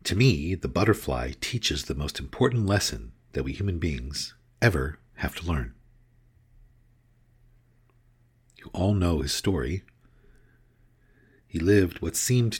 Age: 50-69